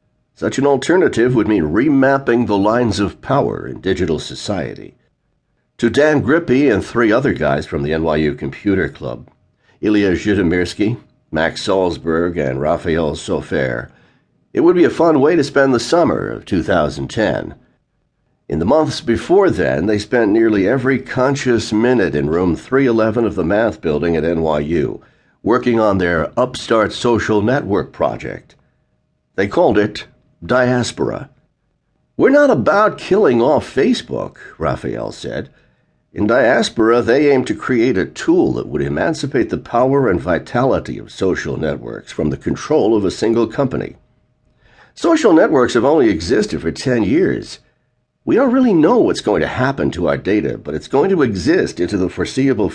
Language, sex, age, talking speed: English, male, 60-79, 155 wpm